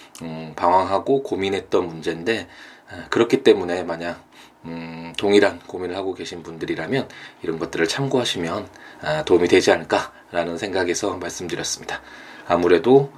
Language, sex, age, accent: Korean, male, 20-39, native